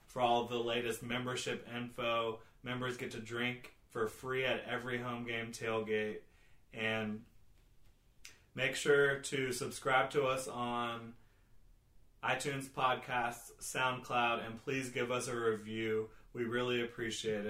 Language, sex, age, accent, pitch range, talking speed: English, male, 30-49, American, 110-125 Hz, 125 wpm